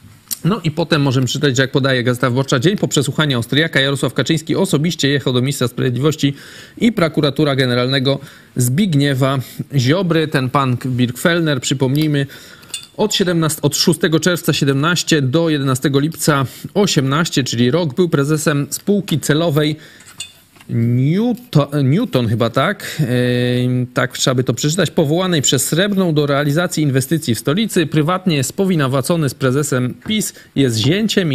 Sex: male